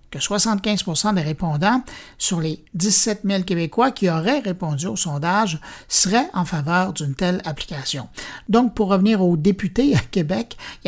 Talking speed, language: 155 wpm, French